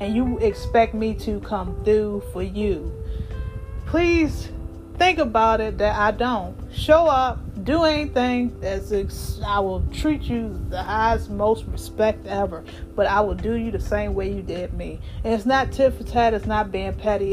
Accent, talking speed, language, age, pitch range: American, 175 wpm, English, 30-49, 205-265 Hz